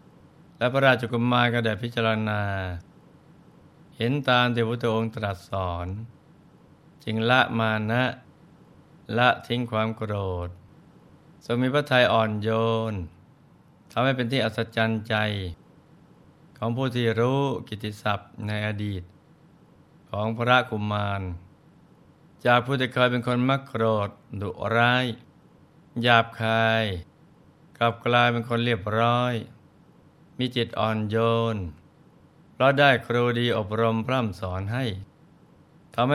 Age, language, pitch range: 60-79, Thai, 110-135 Hz